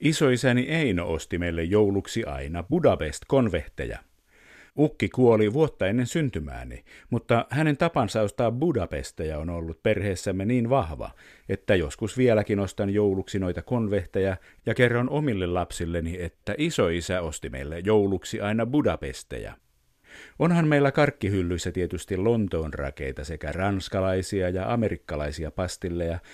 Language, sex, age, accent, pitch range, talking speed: Finnish, male, 50-69, native, 85-115 Hz, 115 wpm